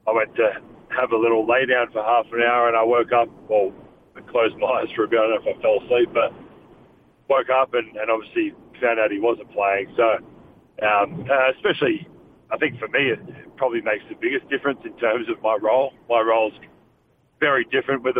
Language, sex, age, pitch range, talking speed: English, male, 40-59, 115-150 Hz, 220 wpm